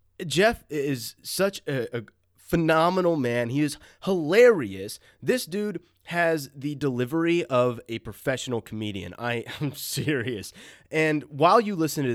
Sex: male